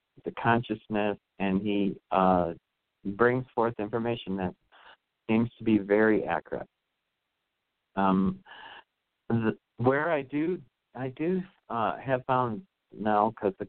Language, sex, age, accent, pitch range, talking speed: English, male, 50-69, American, 100-125 Hz, 115 wpm